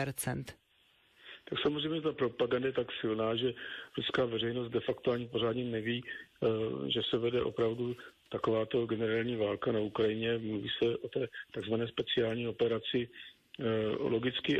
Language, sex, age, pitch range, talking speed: Slovak, male, 50-69, 110-120 Hz, 130 wpm